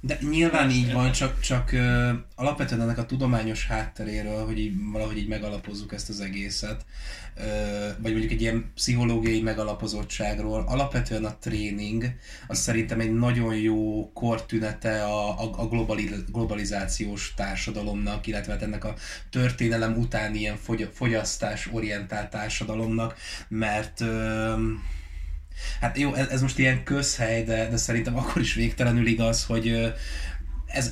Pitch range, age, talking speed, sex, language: 105-115 Hz, 20-39, 130 wpm, male, Hungarian